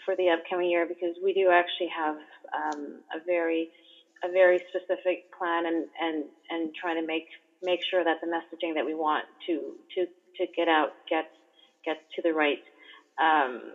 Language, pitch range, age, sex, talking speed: English, 165-190 Hz, 30-49, female, 180 wpm